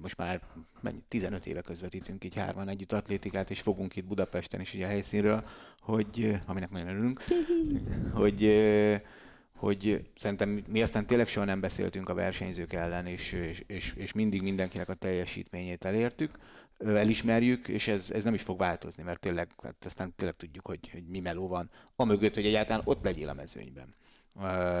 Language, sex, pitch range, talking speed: Hungarian, male, 95-110 Hz, 170 wpm